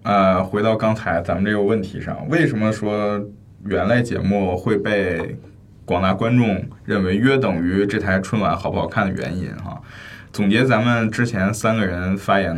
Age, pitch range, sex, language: 20-39, 95-115 Hz, male, Chinese